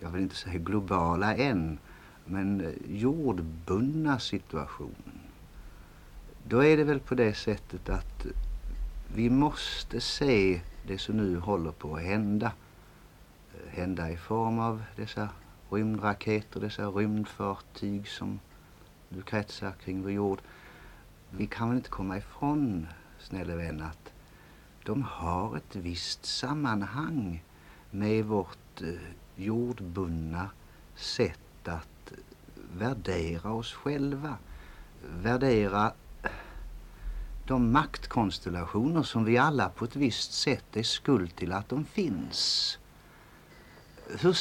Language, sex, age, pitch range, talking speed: Swedish, male, 60-79, 90-125 Hz, 110 wpm